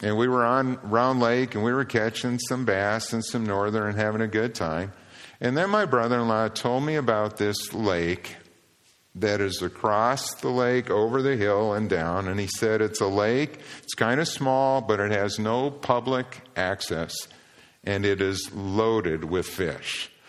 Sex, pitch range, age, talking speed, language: male, 105-125 Hz, 50-69, 180 wpm, English